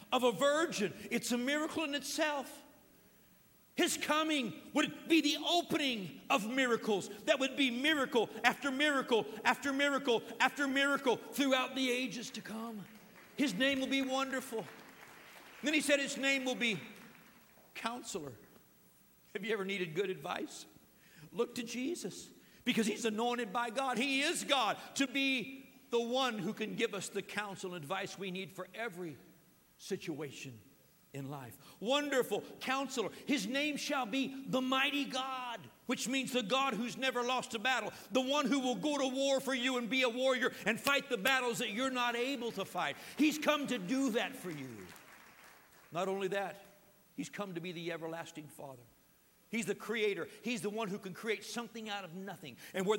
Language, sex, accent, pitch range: English, male, American, 195-265 Hz